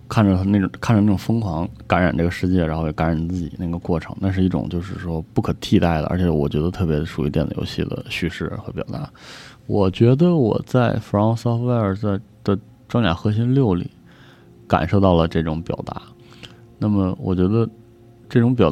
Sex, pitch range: male, 85-115 Hz